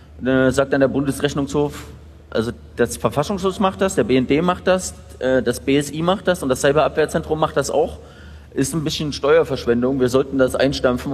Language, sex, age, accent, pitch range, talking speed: German, male, 30-49, German, 115-140 Hz, 165 wpm